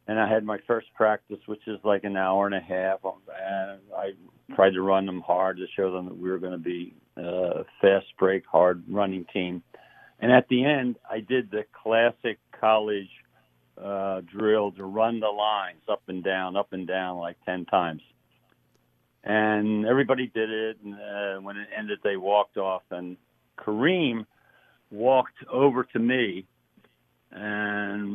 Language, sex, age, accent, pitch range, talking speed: English, male, 60-79, American, 95-115 Hz, 160 wpm